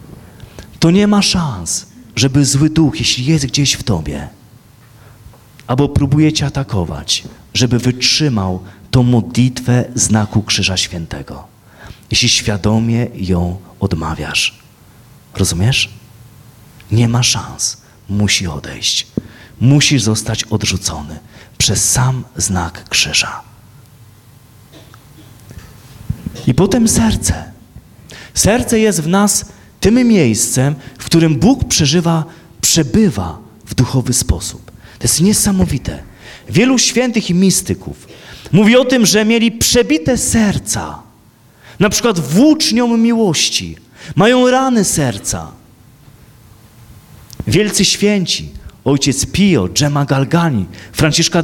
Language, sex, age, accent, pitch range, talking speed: Polish, male, 30-49, native, 110-175 Hz, 100 wpm